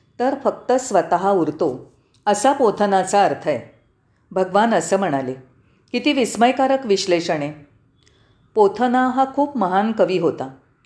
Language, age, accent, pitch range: Marathi, 40-59, native, 150-245 Hz